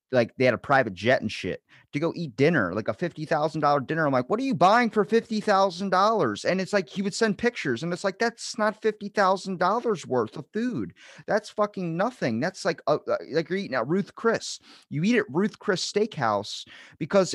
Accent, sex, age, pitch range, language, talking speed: American, male, 30-49, 120-190 Hz, English, 200 wpm